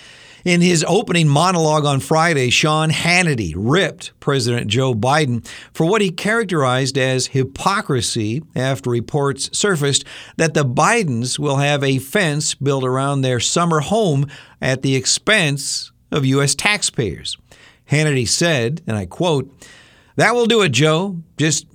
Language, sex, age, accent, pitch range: Chinese, male, 50-69, American, 115-155 Hz